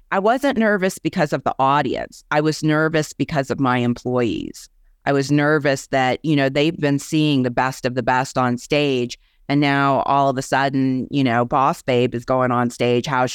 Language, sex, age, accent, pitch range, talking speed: English, female, 30-49, American, 130-155 Hz, 200 wpm